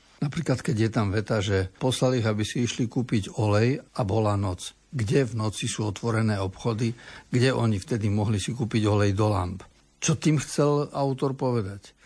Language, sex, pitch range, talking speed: Slovak, male, 105-130 Hz, 180 wpm